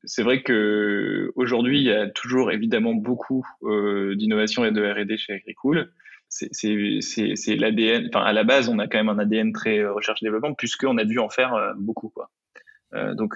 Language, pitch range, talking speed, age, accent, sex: French, 105-135 Hz, 205 wpm, 20-39, French, male